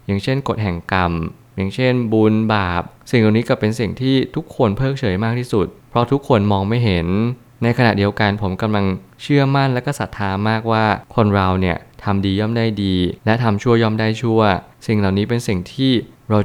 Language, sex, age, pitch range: Thai, male, 20-39, 95-120 Hz